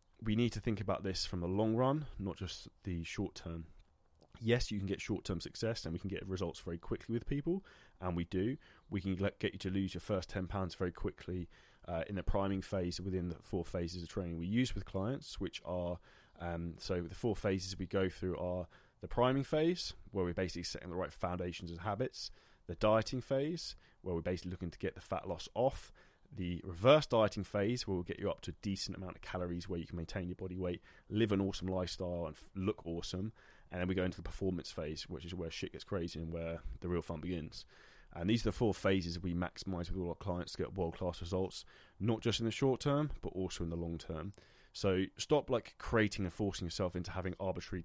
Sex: male